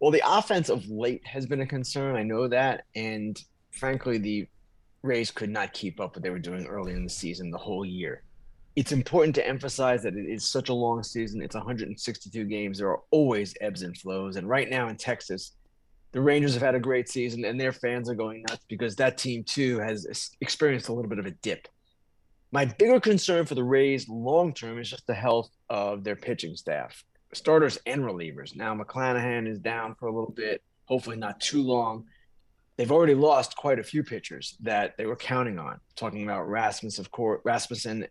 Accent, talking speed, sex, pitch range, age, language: American, 205 wpm, male, 105-135 Hz, 30-49, English